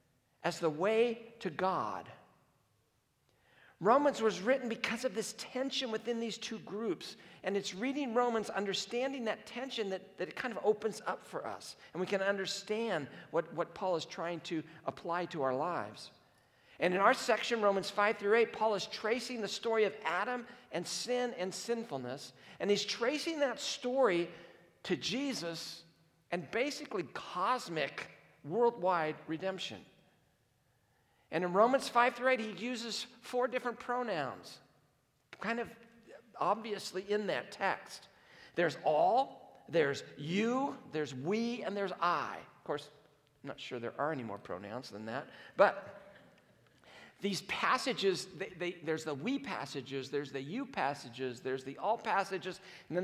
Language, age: English, 50-69